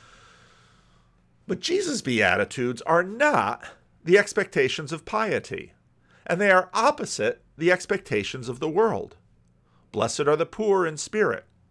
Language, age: English, 50-69